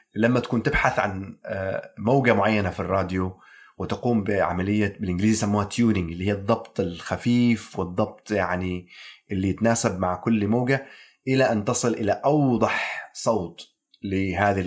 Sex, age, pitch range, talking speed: male, 30-49, 95-125 Hz, 125 wpm